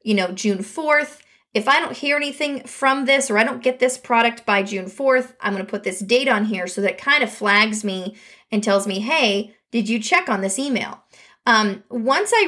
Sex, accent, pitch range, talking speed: female, American, 205-275 Hz, 220 wpm